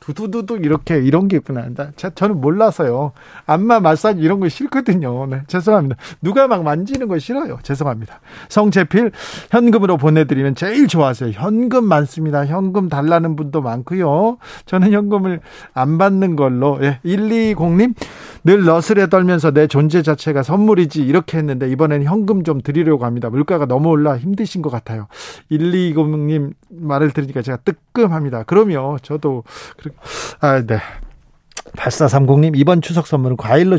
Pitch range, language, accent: 140-185 Hz, Korean, native